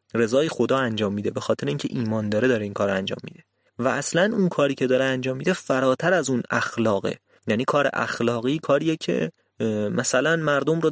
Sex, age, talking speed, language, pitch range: male, 30-49, 185 wpm, Persian, 115-155 Hz